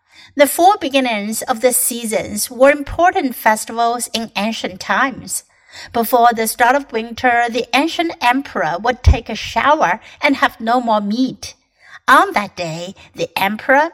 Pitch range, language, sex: 220-275 Hz, Chinese, female